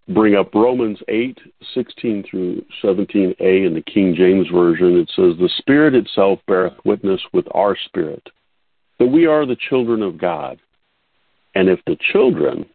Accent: American